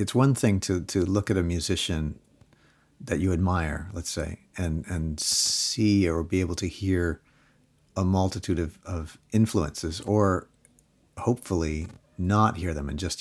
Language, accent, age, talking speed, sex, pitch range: English, American, 50-69, 155 wpm, male, 80-100 Hz